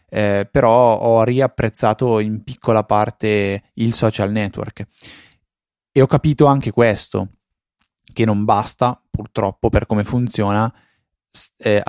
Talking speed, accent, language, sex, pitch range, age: 115 wpm, native, Italian, male, 100-115 Hz, 20-39